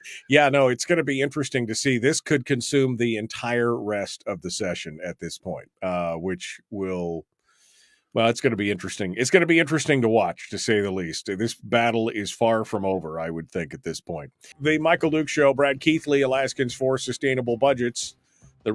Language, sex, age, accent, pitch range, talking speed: English, male, 40-59, American, 110-140 Hz, 205 wpm